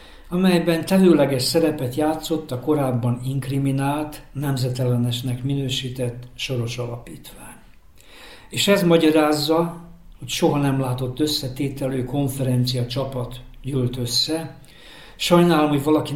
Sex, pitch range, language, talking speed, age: male, 125-150 Hz, Hungarian, 95 wpm, 60-79